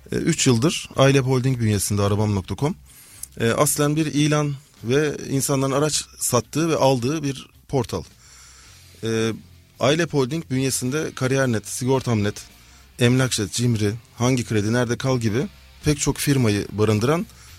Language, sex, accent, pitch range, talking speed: Turkish, male, native, 110-140 Hz, 115 wpm